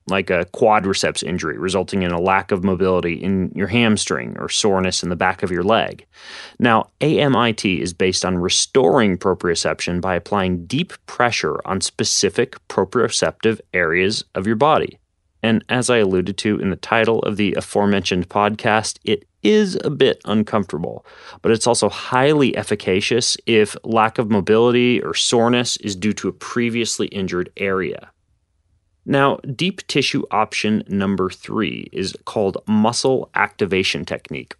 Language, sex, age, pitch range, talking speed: English, male, 30-49, 95-115 Hz, 145 wpm